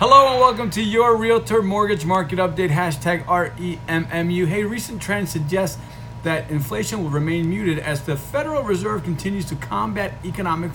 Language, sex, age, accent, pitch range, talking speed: English, male, 40-59, American, 120-175 Hz, 155 wpm